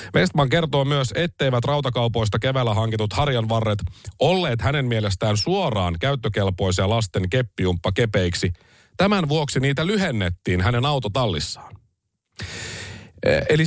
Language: Finnish